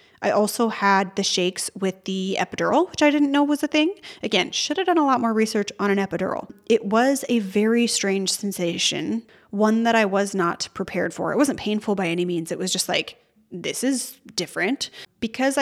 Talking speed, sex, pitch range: 205 wpm, female, 190-225 Hz